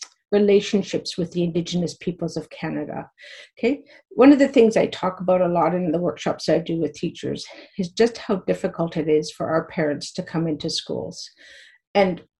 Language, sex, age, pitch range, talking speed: English, female, 50-69, 175-225 Hz, 185 wpm